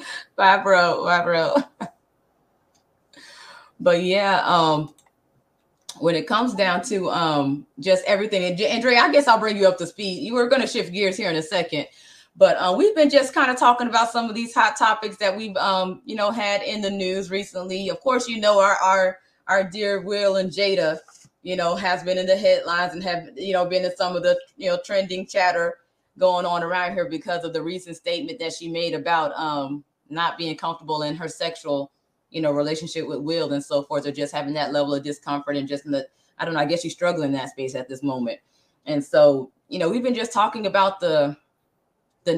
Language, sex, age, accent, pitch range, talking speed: English, female, 20-39, American, 155-200 Hz, 220 wpm